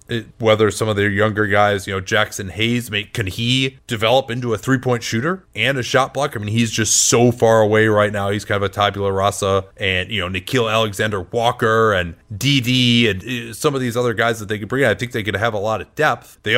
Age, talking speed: 30-49, 240 wpm